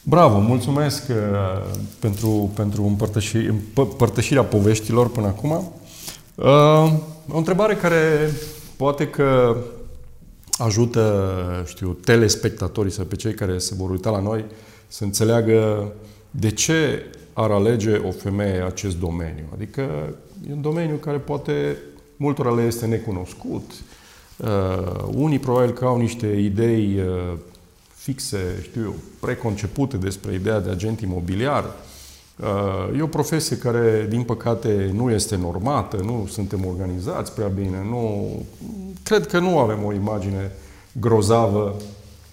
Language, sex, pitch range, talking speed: Romanian, male, 100-125 Hz, 120 wpm